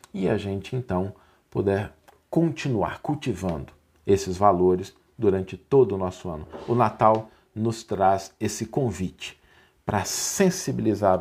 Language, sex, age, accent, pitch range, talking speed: Portuguese, male, 50-69, Brazilian, 100-130 Hz, 120 wpm